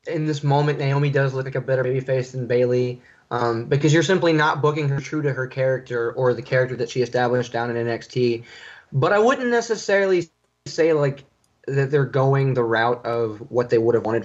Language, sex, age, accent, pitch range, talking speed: English, male, 20-39, American, 120-150 Hz, 205 wpm